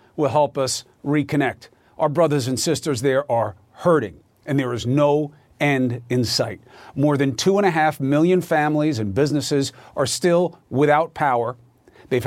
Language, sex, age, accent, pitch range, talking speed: English, male, 40-59, American, 125-175 Hz, 160 wpm